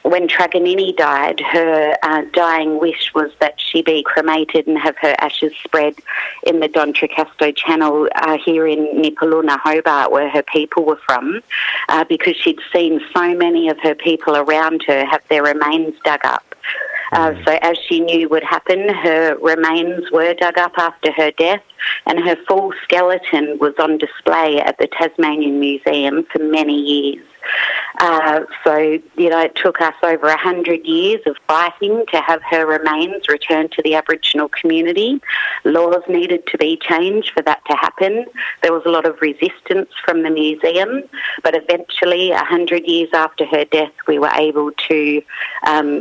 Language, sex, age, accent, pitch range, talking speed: English, female, 50-69, Australian, 150-170 Hz, 170 wpm